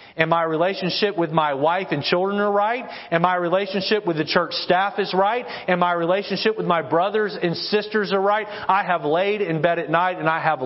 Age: 30-49